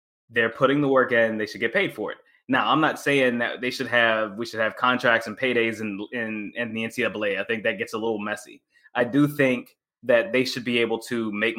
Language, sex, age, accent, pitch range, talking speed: English, male, 20-39, American, 115-135 Hz, 250 wpm